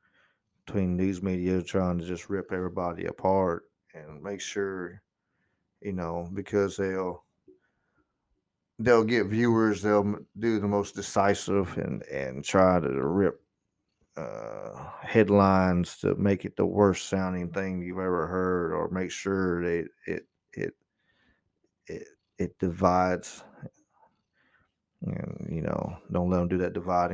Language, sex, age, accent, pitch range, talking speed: English, male, 30-49, American, 90-105 Hz, 130 wpm